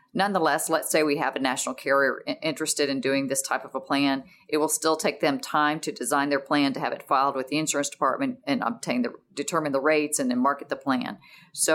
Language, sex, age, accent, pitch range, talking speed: English, female, 40-59, American, 140-170 Hz, 235 wpm